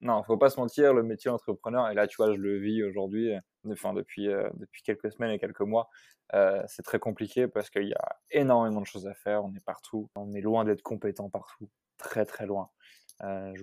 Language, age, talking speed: French, 20-39, 240 wpm